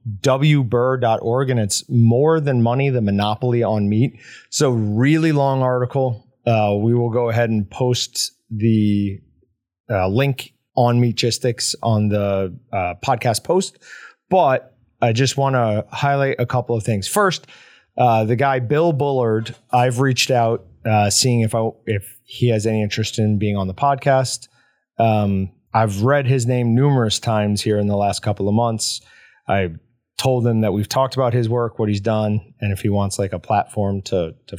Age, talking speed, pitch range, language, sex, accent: 30-49, 170 wpm, 105-130 Hz, English, male, American